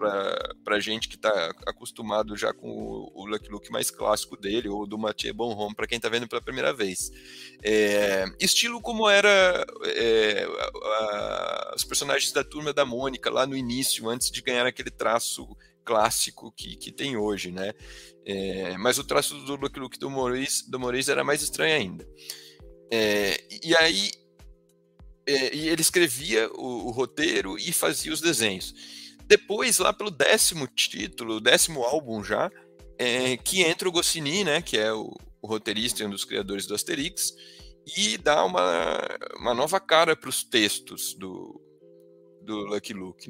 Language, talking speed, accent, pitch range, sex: Portuguese, 165 wpm, Brazilian, 100-155 Hz, male